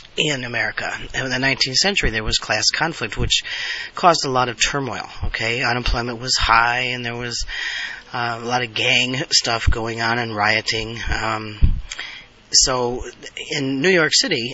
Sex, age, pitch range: male, 40-59, 110-140 Hz